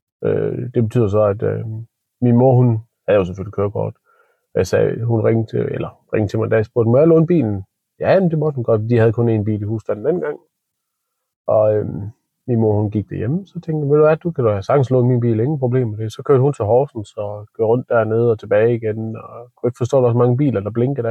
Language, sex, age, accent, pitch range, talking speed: Danish, male, 30-49, native, 110-120 Hz, 245 wpm